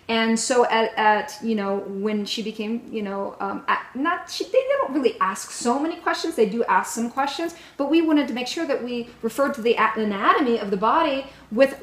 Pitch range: 210-265 Hz